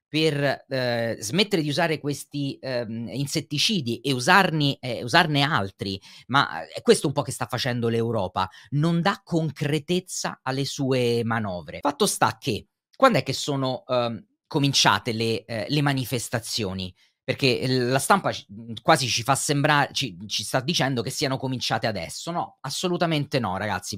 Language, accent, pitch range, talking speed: Italian, native, 115-150 Hz, 155 wpm